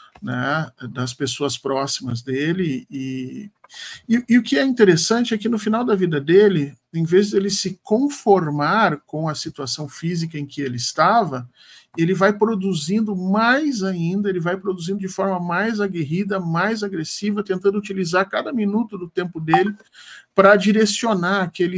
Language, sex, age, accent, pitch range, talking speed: Portuguese, male, 50-69, Brazilian, 150-200 Hz, 155 wpm